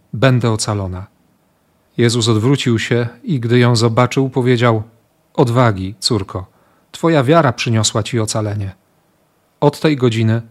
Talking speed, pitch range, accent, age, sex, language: 115 wpm, 110-140 Hz, native, 40-59, male, Polish